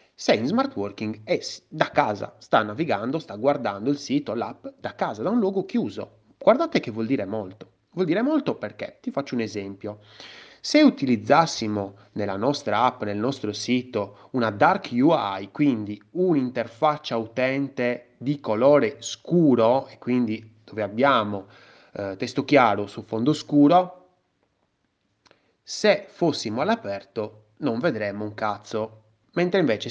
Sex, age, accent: male, 30-49, native